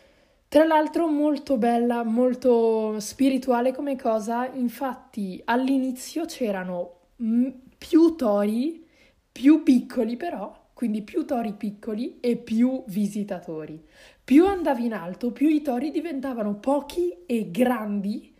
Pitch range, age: 195-265 Hz, 20-39